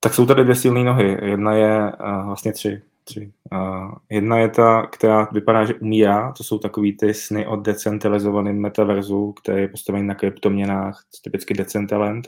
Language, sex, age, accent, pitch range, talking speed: Czech, male, 20-39, native, 100-110 Hz, 170 wpm